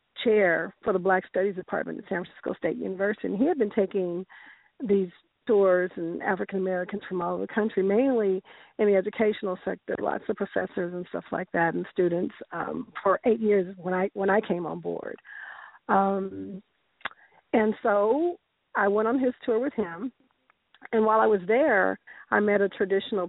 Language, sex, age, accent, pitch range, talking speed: English, female, 50-69, American, 180-215 Hz, 180 wpm